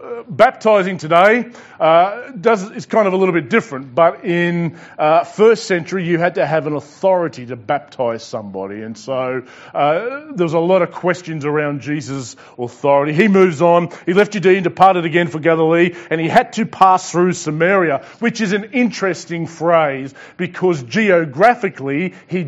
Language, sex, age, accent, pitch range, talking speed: English, male, 30-49, Australian, 160-195 Hz, 165 wpm